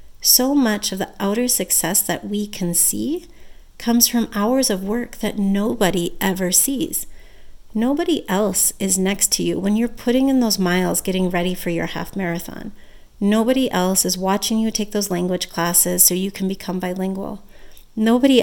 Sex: female